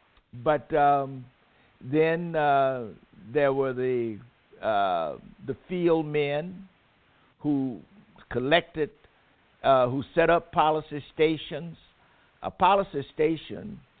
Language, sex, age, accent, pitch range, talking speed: English, male, 60-79, American, 130-165 Hz, 95 wpm